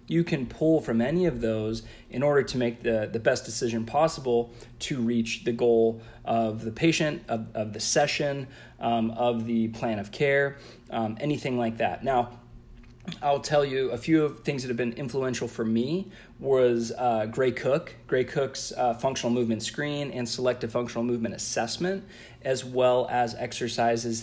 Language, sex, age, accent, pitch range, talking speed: English, male, 30-49, American, 115-130 Hz, 175 wpm